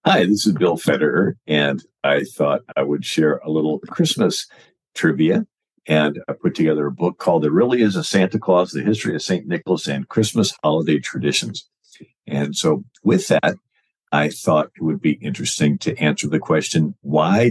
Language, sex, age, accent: English, male, 50-69, American